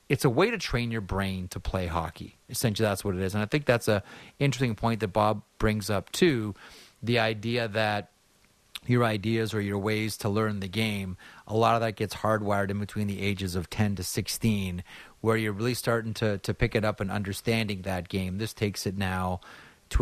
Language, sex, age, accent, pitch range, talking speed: English, male, 30-49, American, 95-120 Hz, 215 wpm